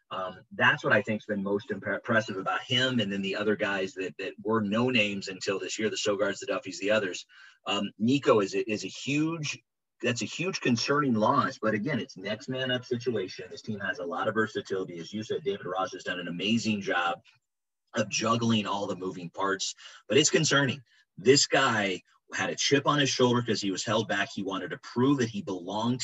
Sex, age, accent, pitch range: male, 30-49, American, 100-125 Hz